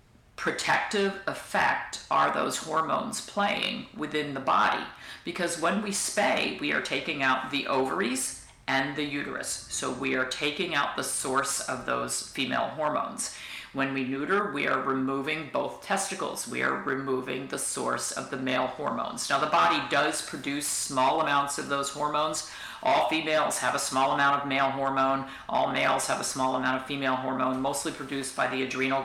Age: 50-69